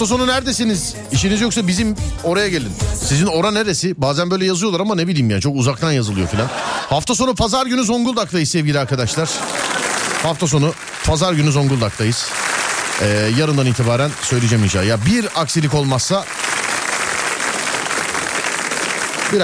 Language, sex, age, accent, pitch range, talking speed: Turkish, male, 40-59, native, 105-155 Hz, 135 wpm